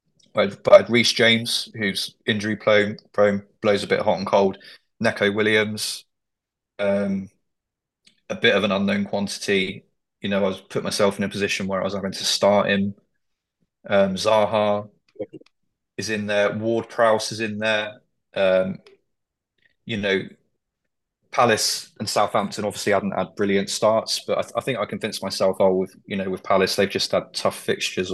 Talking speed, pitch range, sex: 155 wpm, 95-105 Hz, male